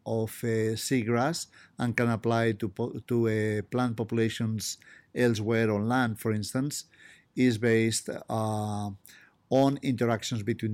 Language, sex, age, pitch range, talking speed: English, male, 50-69, 115-130 Hz, 130 wpm